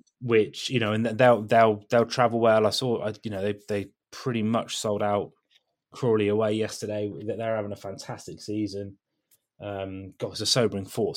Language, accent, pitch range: English, British, 100-115 Hz